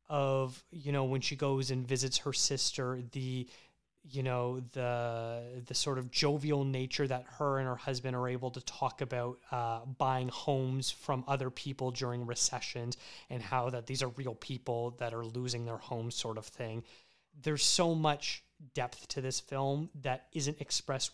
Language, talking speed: English, 175 wpm